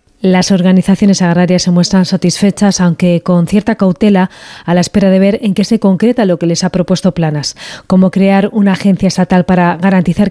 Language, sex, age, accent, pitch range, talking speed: Spanish, female, 30-49, Spanish, 180-205 Hz, 185 wpm